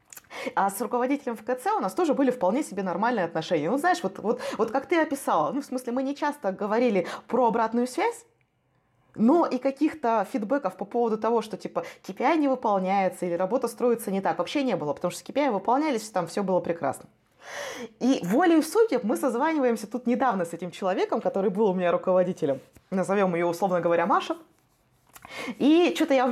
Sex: female